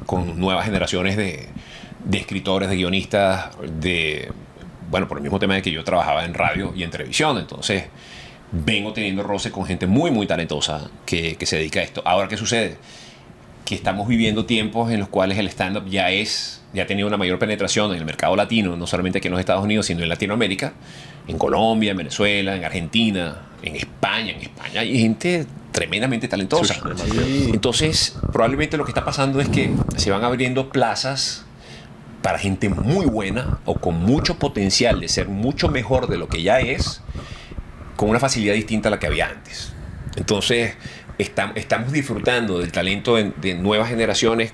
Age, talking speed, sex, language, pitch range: 30-49, 180 wpm, male, Spanish, 95-115 Hz